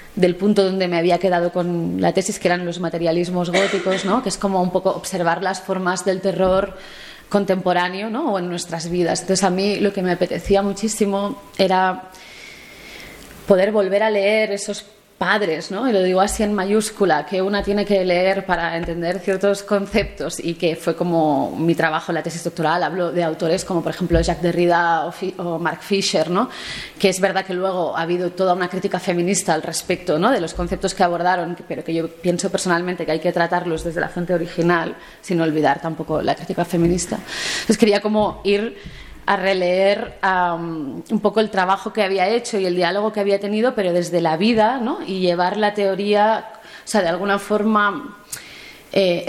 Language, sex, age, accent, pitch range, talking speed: Spanish, female, 20-39, Spanish, 175-200 Hz, 190 wpm